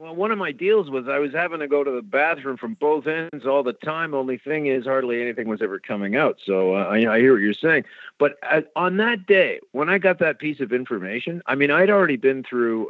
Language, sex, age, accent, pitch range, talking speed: English, male, 50-69, American, 115-155 Hz, 255 wpm